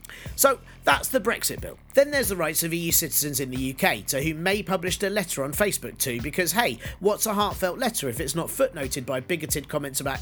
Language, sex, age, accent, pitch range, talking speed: English, male, 40-59, British, 140-205 Hz, 225 wpm